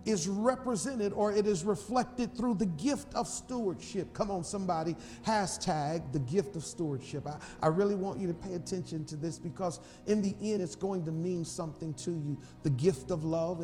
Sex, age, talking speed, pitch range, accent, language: male, 40-59, 195 wpm, 165-215 Hz, American, English